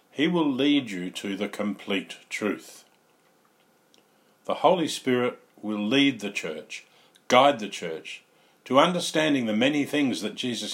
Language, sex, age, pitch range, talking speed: English, male, 50-69, 105-145 Hz, 140 wpm